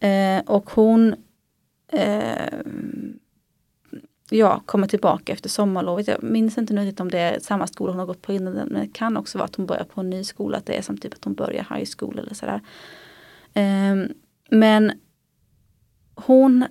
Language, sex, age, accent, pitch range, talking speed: Swedish, female, 30-49, native, 185-225 Hz, 180 wpm